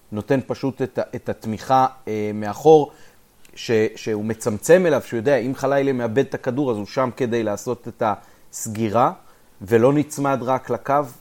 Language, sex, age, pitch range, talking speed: Hebrew, male, 30-49, 115-140 Hz, 155 wpm